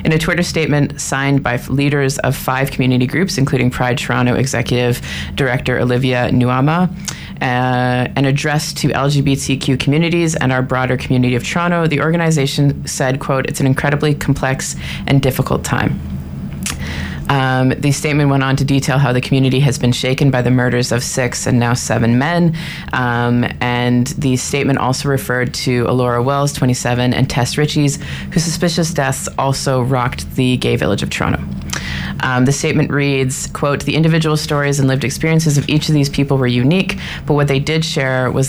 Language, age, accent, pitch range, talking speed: English, 20-39, American, 125-145 Hz, 170 wpm